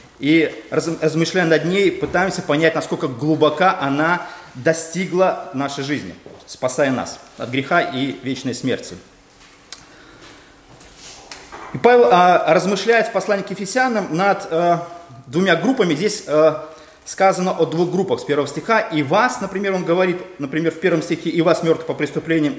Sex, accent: male, native